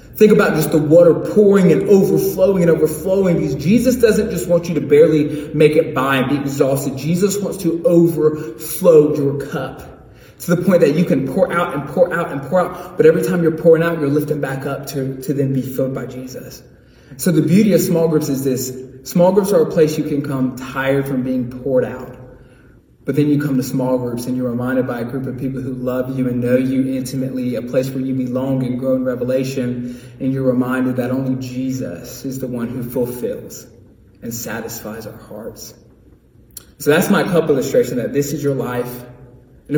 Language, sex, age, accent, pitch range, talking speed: English, male, 20-39, American, 125-150 Hz, 210 wpm